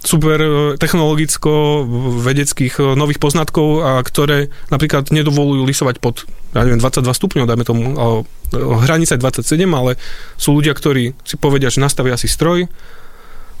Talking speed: 130 wpm